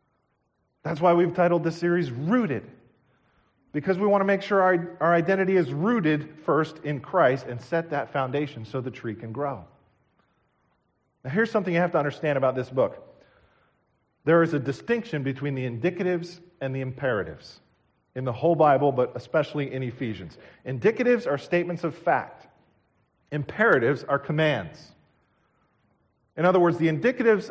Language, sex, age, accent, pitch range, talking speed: English, male, 40-59, American, 130-175 Hz, 155 wpm